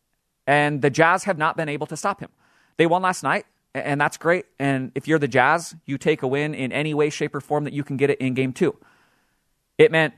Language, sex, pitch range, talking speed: English, male, 135-165 Hz, 250 wpm